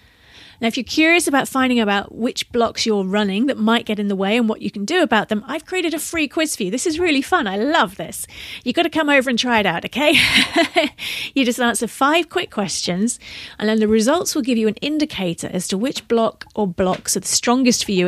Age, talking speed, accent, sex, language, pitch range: 40-59, 245 wpm, British, female, English, 205-275 Hz